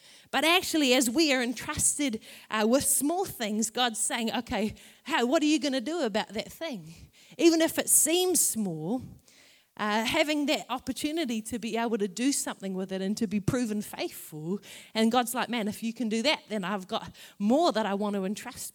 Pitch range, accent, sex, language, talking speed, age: 220-280 Hz, Australian, female, English, 200 wpm, 30-49